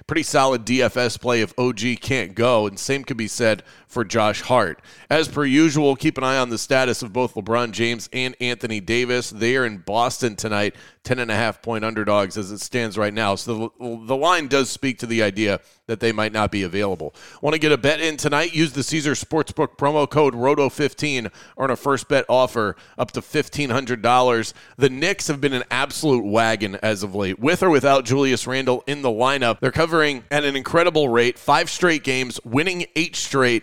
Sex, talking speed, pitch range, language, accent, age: male, 200 wpm, 115-145 Hz, English, American, 30-49